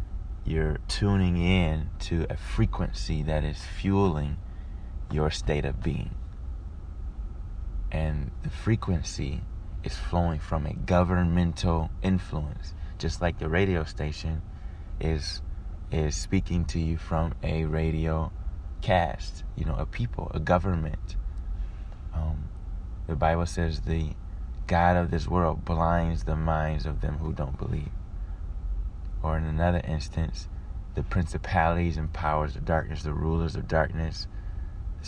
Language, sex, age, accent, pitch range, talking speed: English, male, 20-39, American, 80-90 Hz, 125 wpm